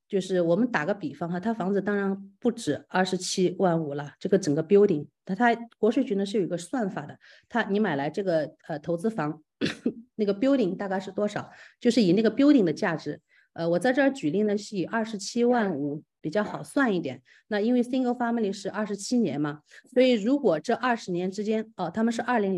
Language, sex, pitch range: Chinese, female, 170-225 Hz